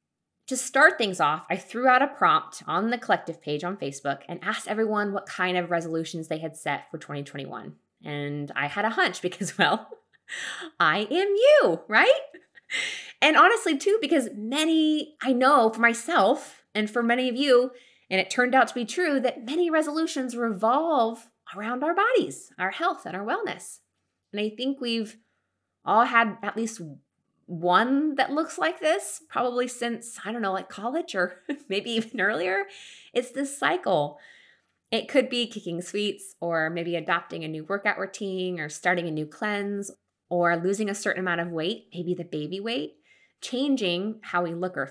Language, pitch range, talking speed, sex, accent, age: English, 175-250 Hz, 175 wpm, female, American, 20-39